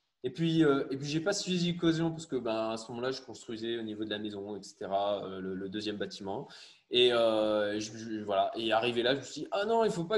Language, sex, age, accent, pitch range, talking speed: French, male, 20-39, French, 120-165 Hz, 270 wpm